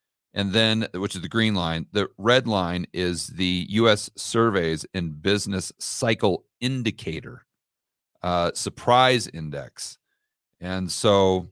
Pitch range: 90-120 Hz